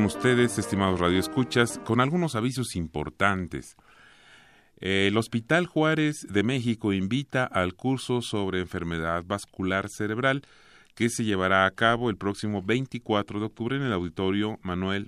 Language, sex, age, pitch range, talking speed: Spanish, male, 40-59, 95-120 Hz, 130 wpm